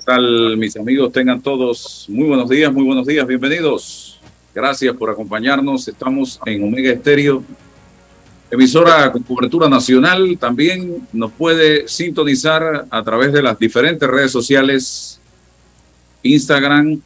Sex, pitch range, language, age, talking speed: male, 105-140 Hz, Spanish, 50-69, 125 wpm